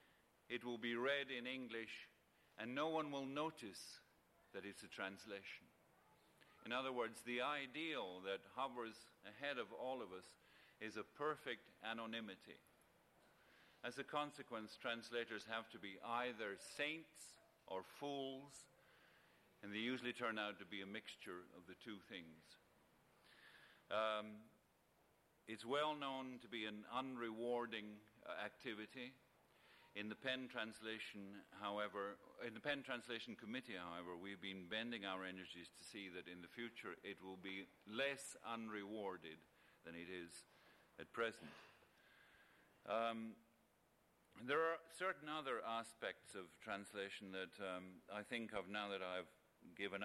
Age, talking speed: 50-69, 135 wpm